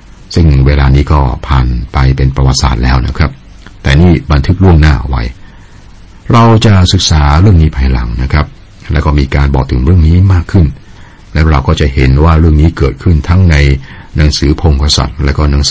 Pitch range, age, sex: 70-95 Hz, 60-79, male